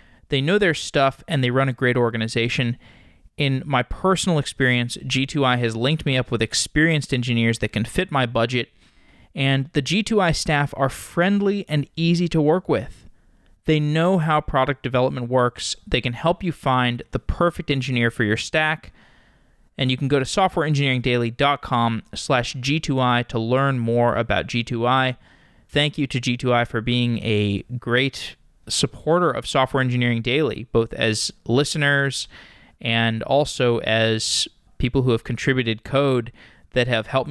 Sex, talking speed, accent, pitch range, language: male, 150 wpm, American, 115-140 Hz, English